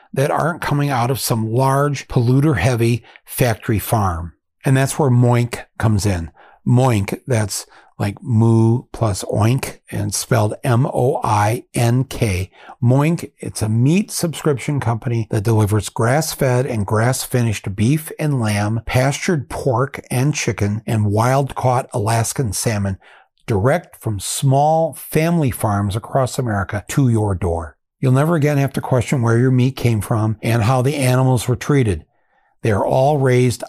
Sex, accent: male, American